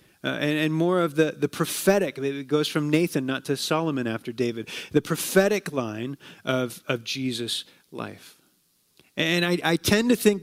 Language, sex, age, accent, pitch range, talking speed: English, male, 30-49, American, 145-185 Hz, 185 wpm